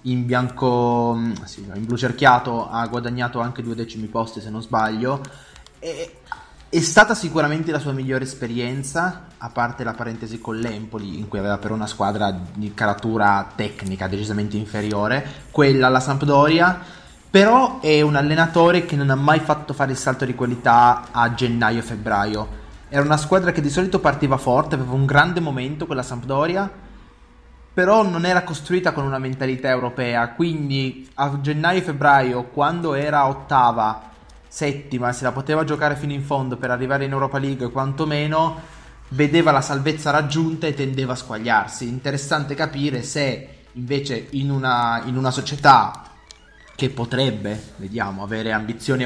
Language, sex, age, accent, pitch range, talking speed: Italian, male, 20-39, native, 115-145 Hz, 150 wpm